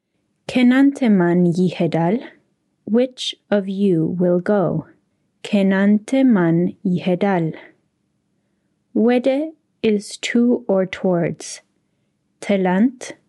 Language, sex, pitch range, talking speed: English, female, 180-240 Hz, 75 wpm